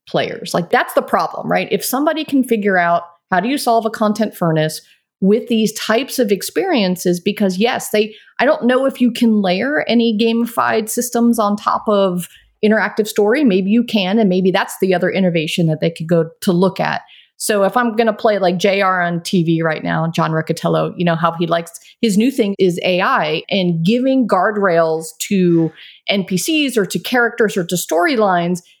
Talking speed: 190 wpm